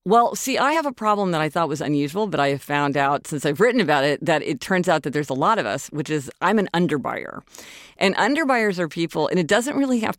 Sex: female